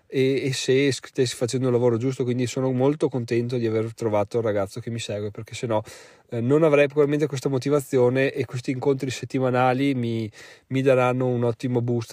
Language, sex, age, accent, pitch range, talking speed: Italian, male, 20-39, native, 125-160 Hz, 180 wpm